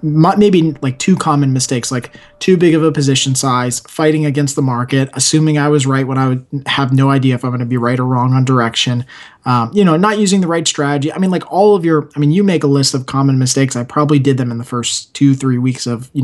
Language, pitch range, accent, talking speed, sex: English, 130-155 Hz, American, 260 wpm, male